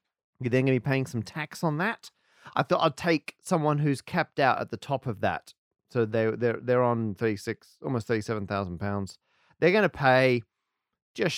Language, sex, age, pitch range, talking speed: English, male, 40-59, 115-150 Hz, 195 wpm